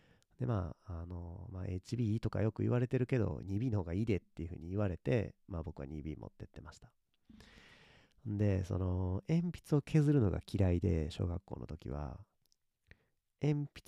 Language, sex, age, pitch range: Japanese, male, 40-59, 85-120 Hz